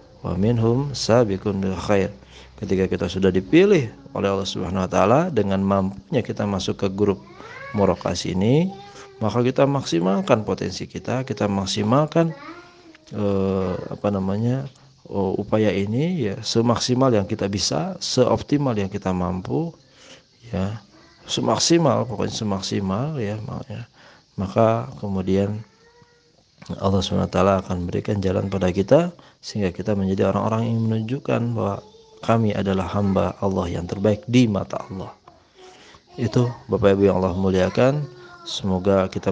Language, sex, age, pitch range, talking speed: Indonesian, male, 40-59, 95-120 Hz, 125 wpm